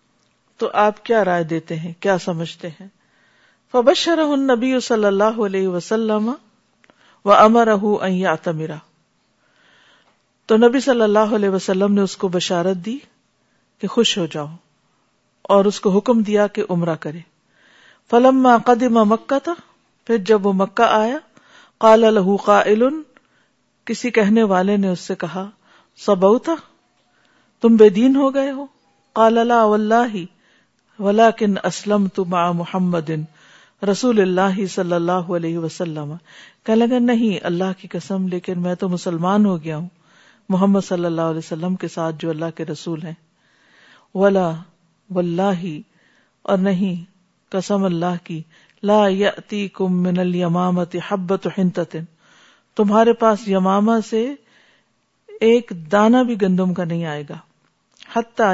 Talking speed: 125 wpm